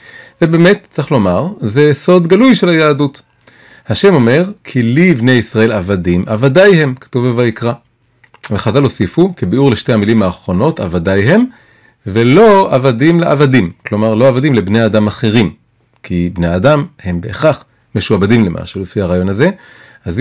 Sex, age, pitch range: male, 30-49, 110-155 Hz